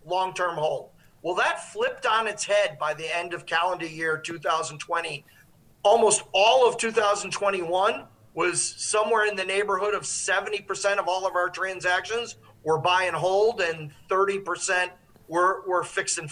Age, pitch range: 40-59, 180-220 Hz